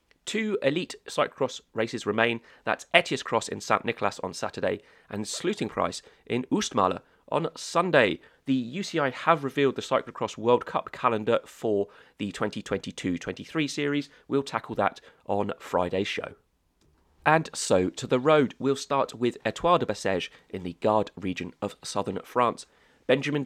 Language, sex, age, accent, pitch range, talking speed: English, male, 30-49, British, 105-145 Hz, 145 wpm